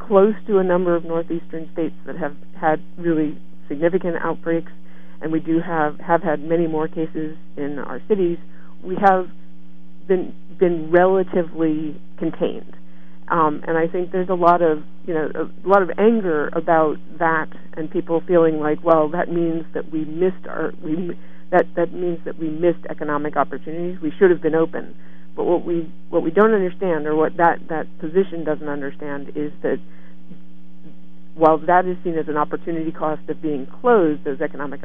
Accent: American